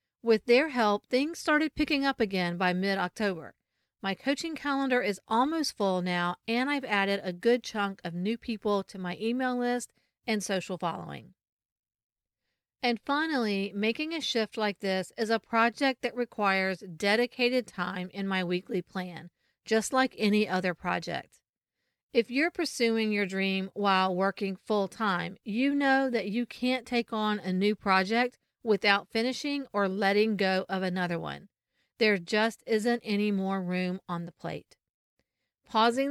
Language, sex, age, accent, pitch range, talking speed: English, female, 40-59, American, 190-240 Hz, 155 wpm